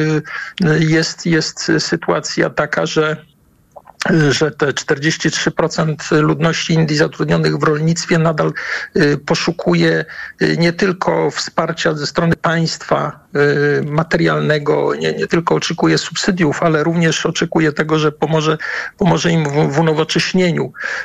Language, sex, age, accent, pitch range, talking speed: Polish, male, 50-69, native, 150-175 Hz, 110 wpm